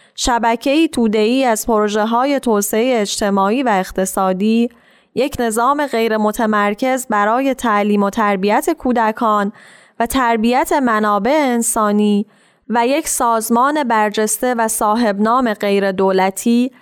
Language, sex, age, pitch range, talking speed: Persian, female, 10-29, 210-245 Hz, 105 wpm